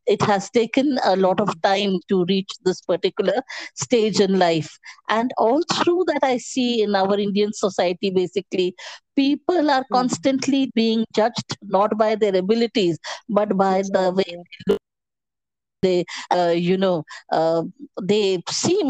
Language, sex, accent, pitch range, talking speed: Hindi, female, native, 185-230 Hz, 150 wpm